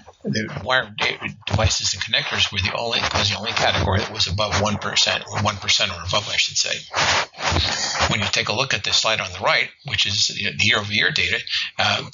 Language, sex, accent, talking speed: English, male, American, 210 wpm